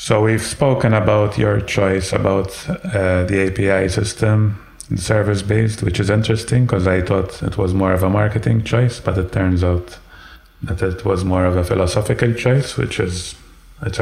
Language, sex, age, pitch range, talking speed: English, male, 30-49, 95-105 Hz, 175 wpm